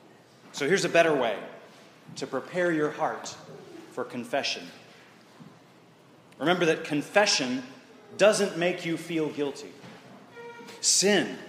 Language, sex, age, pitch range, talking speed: English, male, 30-49, 140-210 Hz, 105 wpm